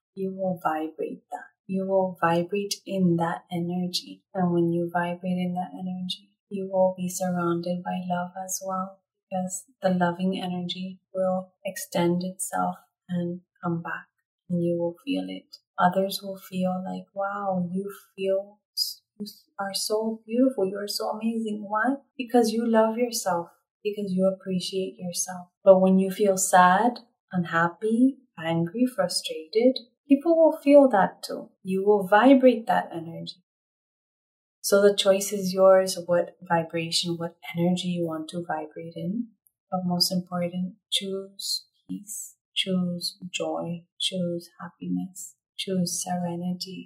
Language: English